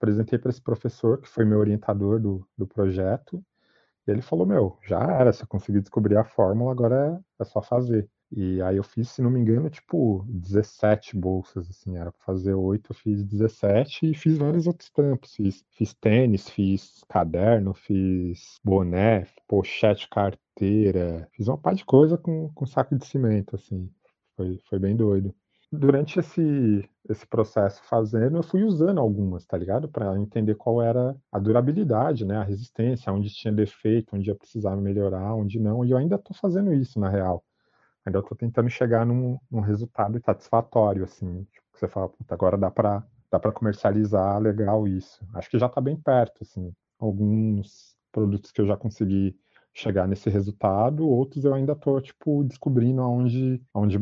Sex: male